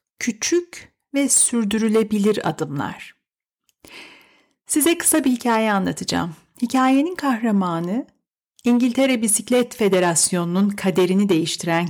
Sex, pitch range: female, 195-270 Hz